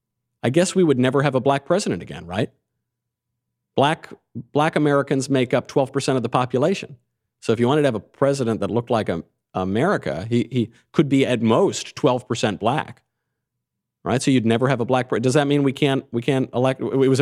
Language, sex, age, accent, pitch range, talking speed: English, male, 50-69, American, 110-140 Hz, 200 wpm